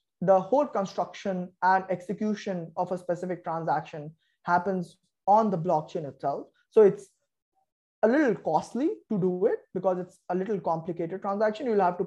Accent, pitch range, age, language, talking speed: Indian, 180-215 Hz, 20-39, English, 155 wpm